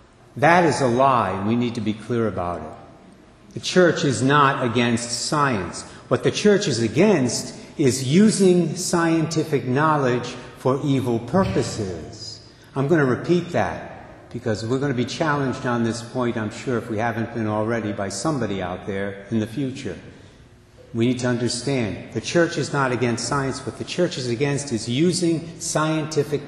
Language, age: English, 60-79